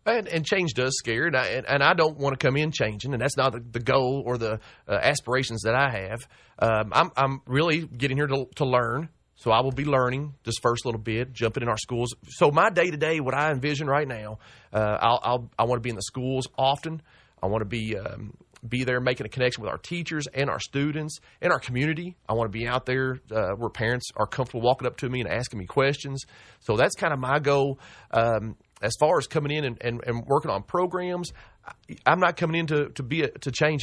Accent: American